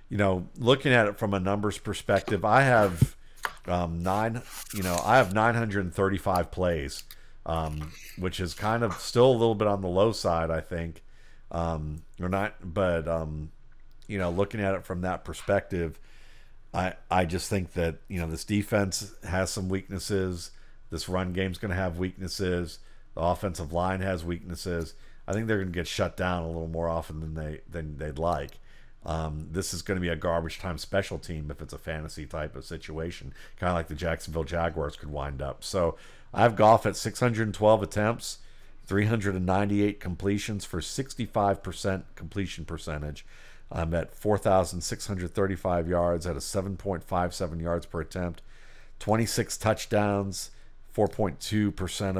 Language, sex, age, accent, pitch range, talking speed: English, male, 50-69, American, 80-100 Hz, 160 wpm